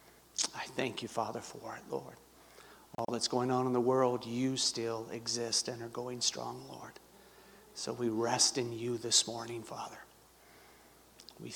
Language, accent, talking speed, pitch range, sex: English, American, 160 wpm, 115-135 Hz, male